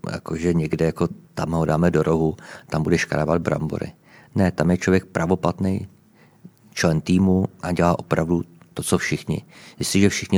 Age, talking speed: 50-69, 150 wpm